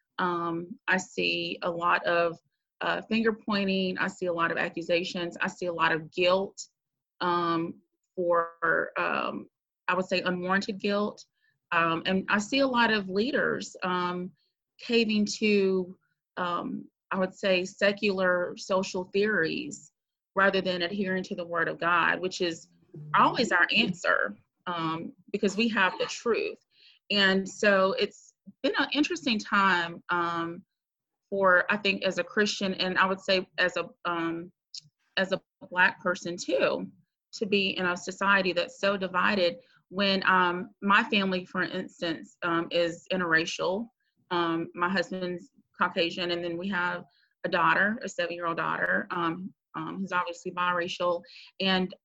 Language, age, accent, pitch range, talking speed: English, 30-49, American, 175-195 Hz, 150 wpm